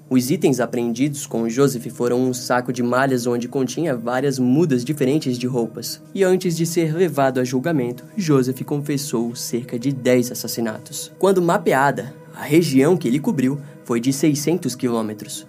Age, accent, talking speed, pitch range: 10-29, Brazilian, 160 wpm, 125-160 Hz